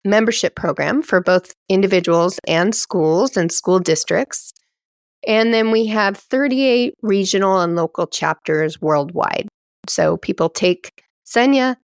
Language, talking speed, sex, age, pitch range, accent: English, 120 wpm, female, 30-49, 170-215 Hz, American